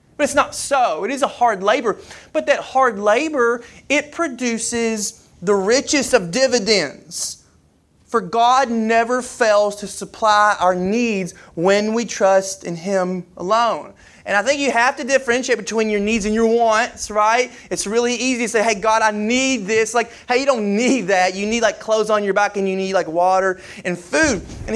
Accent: American